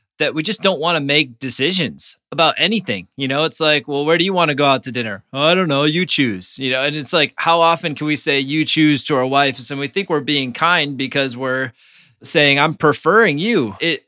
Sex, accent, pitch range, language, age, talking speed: male, American, 135-165 Hz, English, 20-39, 245 wpm